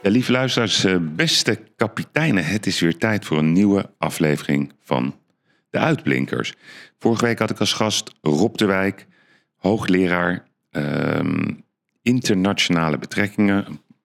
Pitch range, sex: 80-100 Hz, male